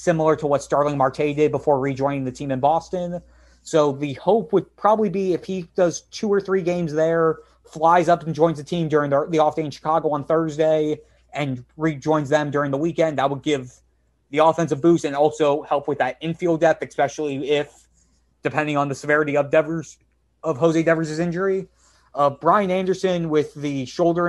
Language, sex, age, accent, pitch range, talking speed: English, male, 30-49, American, 145-170 Hz, 190 wpm